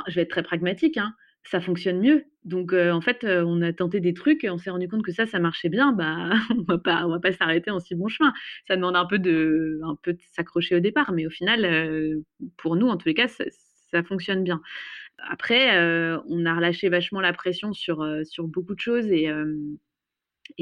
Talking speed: 230 wpm